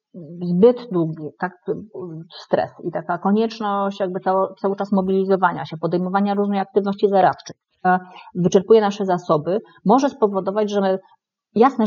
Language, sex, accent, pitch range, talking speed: Polish, female, native, 175-210 Hz, 125 wpm